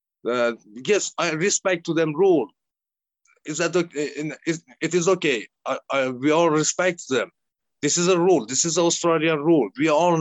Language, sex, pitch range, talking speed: English, male, 155-195 Hz, 170 wpm